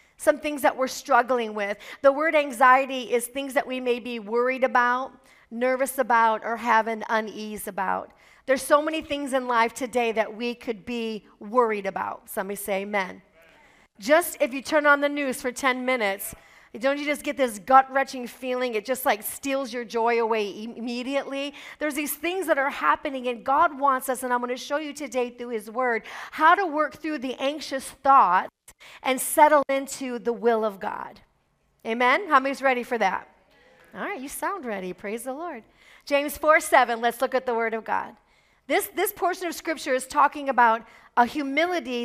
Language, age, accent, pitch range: English, 40-59, American, 240-285 Hz